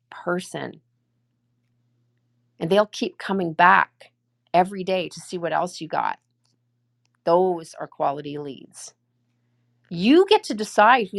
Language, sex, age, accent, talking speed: English, female, 40-59, American, 125 wpm